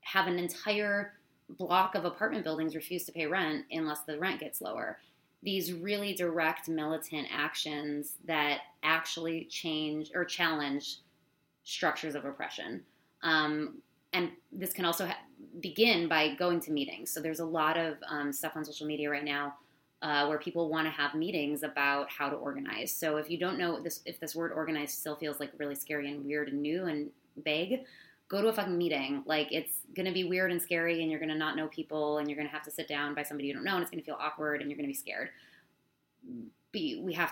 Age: 20-39